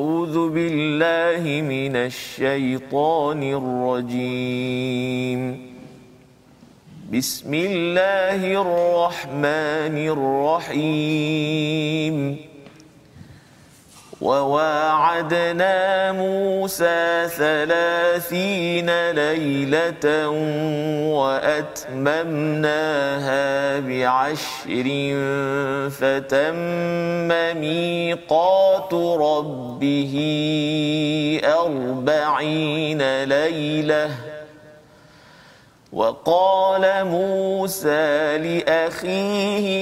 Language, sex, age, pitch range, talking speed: Malayalam, male, 40-59, 135-170 Hz, 35 wpm